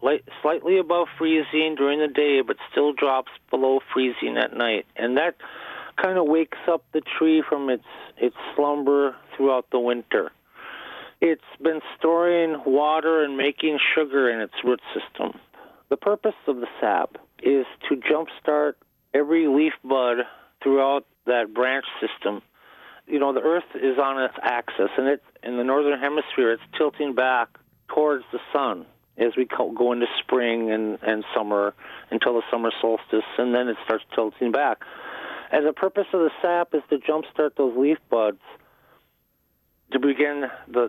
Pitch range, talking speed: 120-150 Hz, 155 wpm